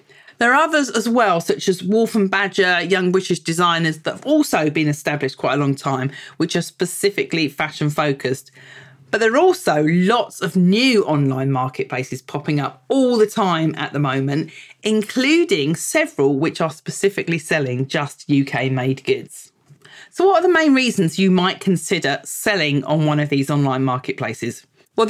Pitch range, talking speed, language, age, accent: 145-210 Hz, 165 wpm, English, 40-59, British